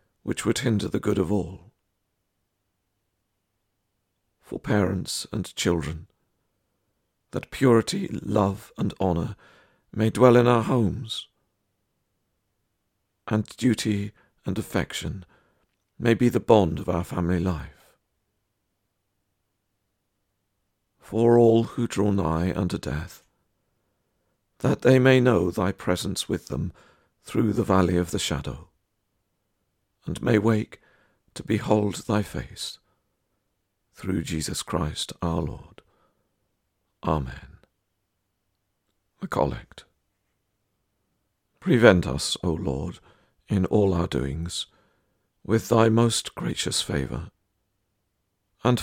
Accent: British